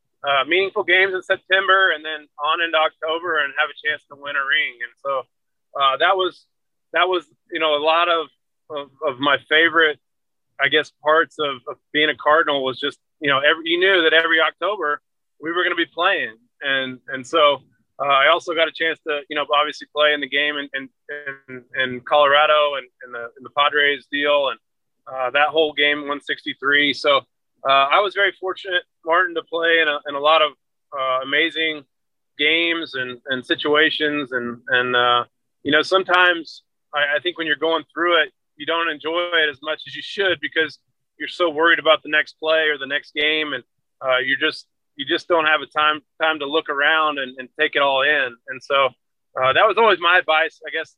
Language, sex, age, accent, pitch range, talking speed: English, male, 20-39, American, 140-165 Hz, 205 wpm